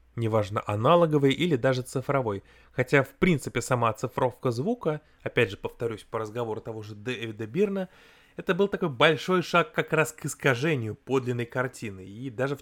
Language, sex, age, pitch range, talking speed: Russian, male, 20-39, 115-150 Hz, 160 wpm